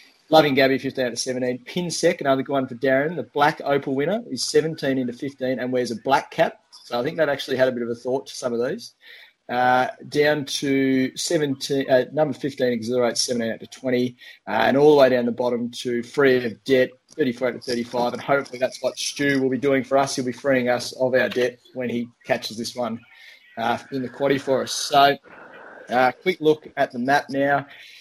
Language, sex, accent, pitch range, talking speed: English, male, Australian, 120-135 Hz, 230 wpm